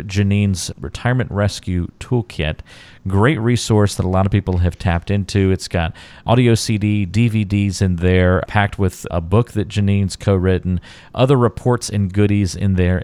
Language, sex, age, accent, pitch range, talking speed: English, male, 40-59, American, 90-115 Hz, 160 wpm